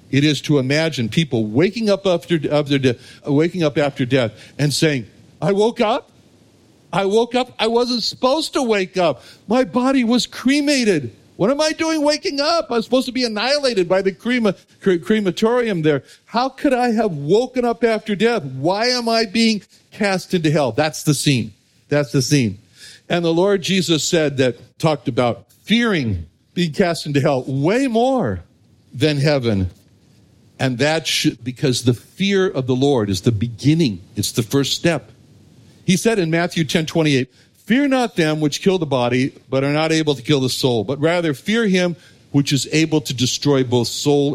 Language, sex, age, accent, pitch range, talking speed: English, male, 60-79, American, 130-200 Hz, 185 wpm